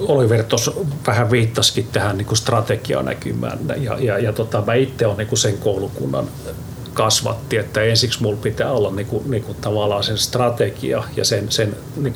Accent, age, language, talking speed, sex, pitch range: native, 40-59, Finnish, 170 wpm, male, 110-130 Hz